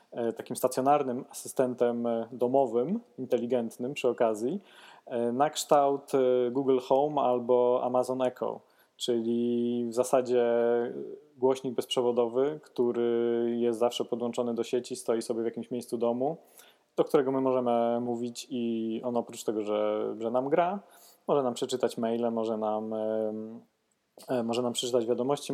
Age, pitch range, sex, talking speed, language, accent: 20-39, 115-130 Hz, male, 125 wpm, Polish, native